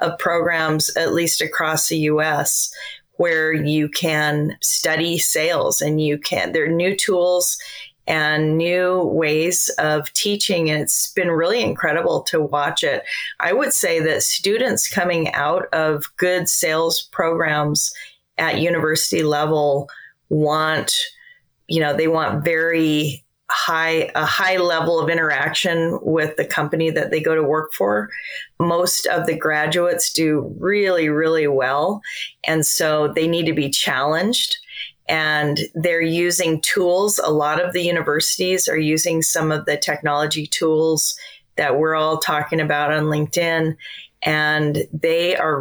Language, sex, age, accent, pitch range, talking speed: English, female, 30-49, American, 150-170 Hz, 140 wpm